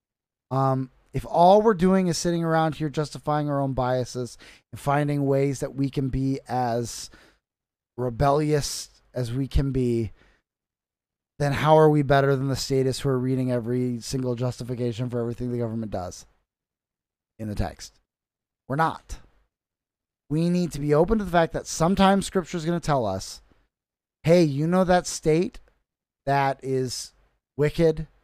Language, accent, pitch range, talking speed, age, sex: English, American, 125-155 Hz, 155 wpm, 20-39, male